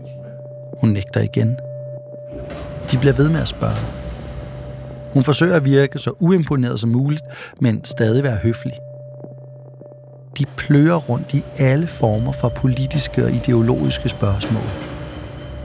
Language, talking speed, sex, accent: Danish, 125 wpm, male, native